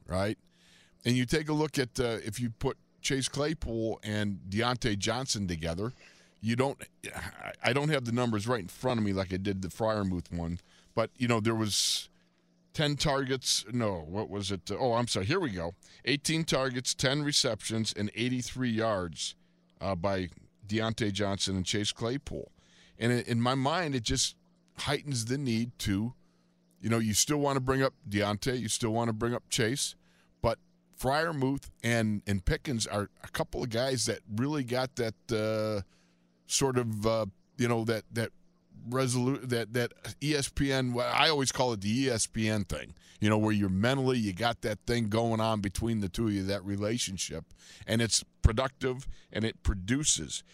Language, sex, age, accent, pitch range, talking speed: English, male, 50-69, American, 100-130 Hz, 180 wpm